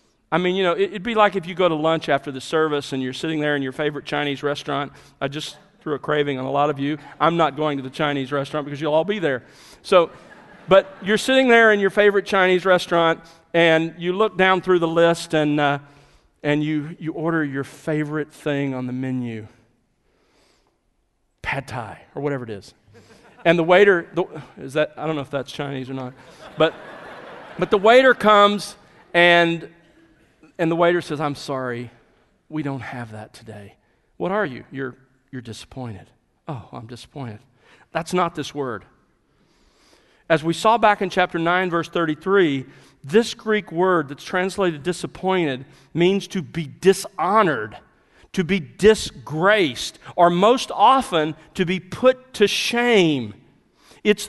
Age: 40-59